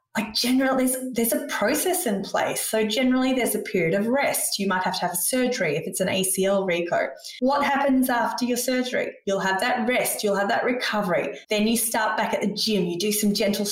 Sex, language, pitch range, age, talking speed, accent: female, English, 190-240 Hz, 20-39, 225 wpm, Australian